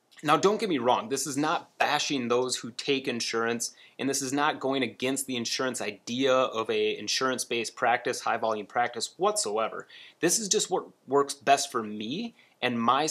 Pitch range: 120-165 Hz